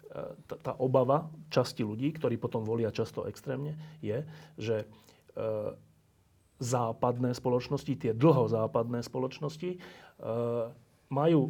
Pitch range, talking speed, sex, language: 120-155 Hz, 95 wpm, male, Slovak